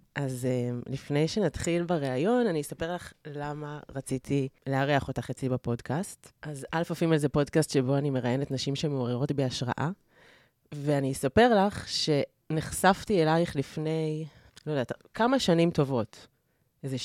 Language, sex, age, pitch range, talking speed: Hebrew, female, 30-49, 140-180 Hz, 130 wpm